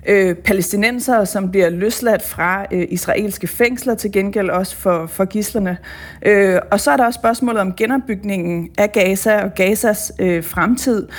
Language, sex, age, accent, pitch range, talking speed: Danish, female, 30-49, native, 190-230 Hz, 140 wpm